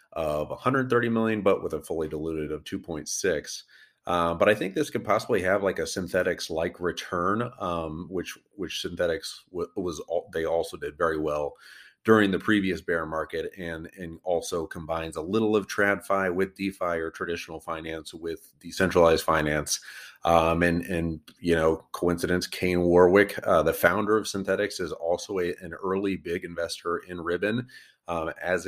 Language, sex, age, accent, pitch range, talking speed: English, male, 30-49, American, 80-100 Hz, 165 wpm